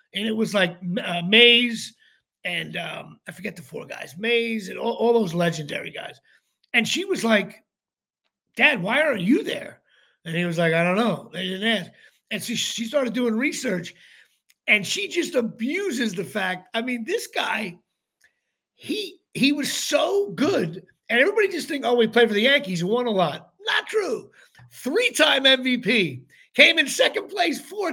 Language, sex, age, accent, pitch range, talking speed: English, male, 50-69, American, 225-320 Hz, 180 wpm